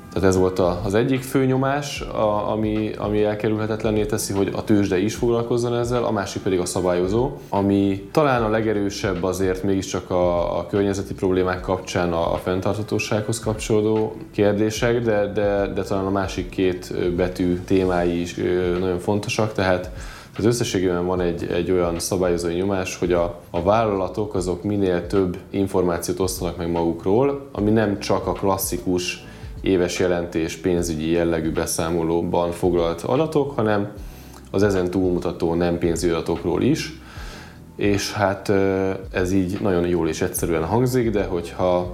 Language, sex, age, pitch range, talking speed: Hungarian, male, 10-29, 85-105 Hz, 145 wpm